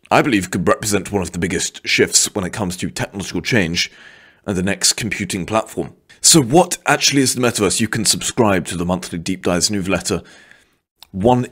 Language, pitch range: English, 85-105 Hz